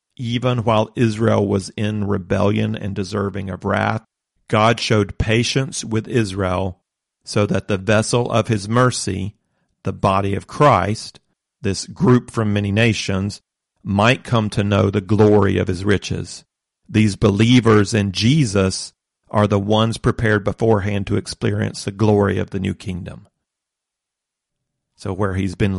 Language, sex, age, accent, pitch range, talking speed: English, male, 40-59, American, 100-115 Hz, 140 wpm